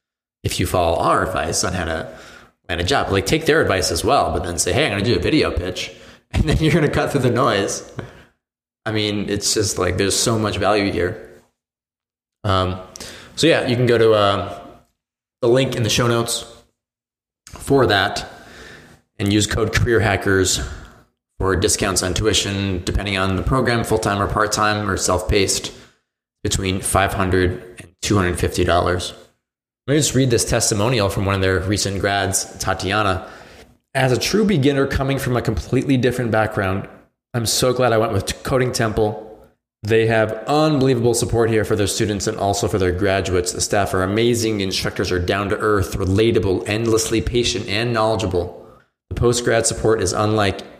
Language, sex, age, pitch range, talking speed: English, male, 20-39, 95-115 Hz, 175 wpm